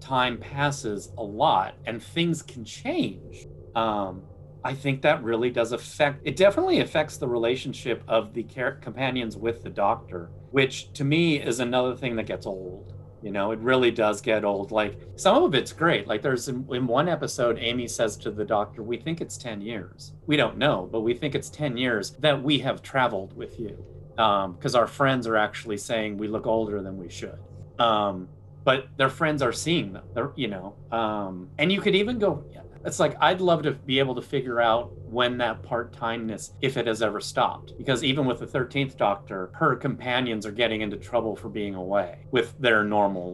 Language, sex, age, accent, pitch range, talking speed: English, male, 30-49, American, 105-130 Hz, 200 wpm